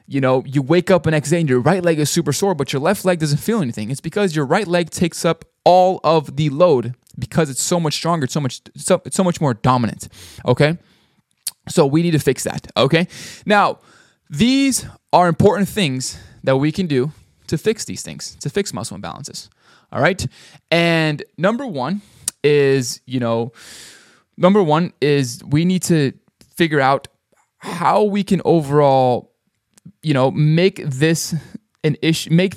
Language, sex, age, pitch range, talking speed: English, male, 20-39, 125-170 Hz, 180 wpm